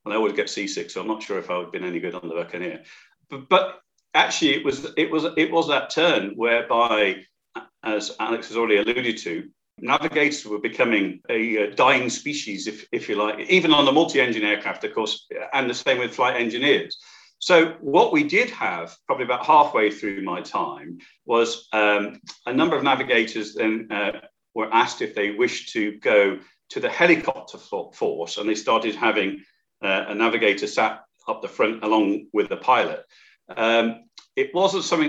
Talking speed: 185 wpm